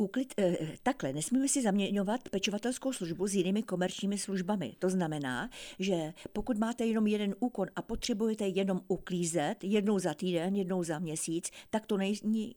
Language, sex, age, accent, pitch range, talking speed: Czech, female, 50-69, native, 180-215 Hz, 155 wpm